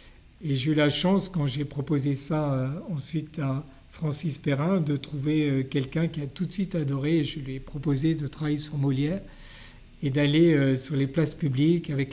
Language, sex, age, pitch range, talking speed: French, male, 50-69, 135-160 Hz, 205 wpm